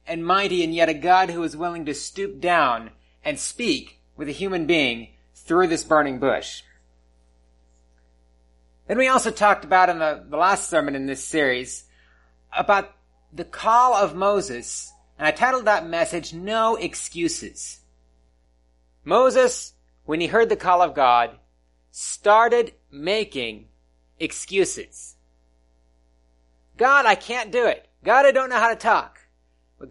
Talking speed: 140 wpm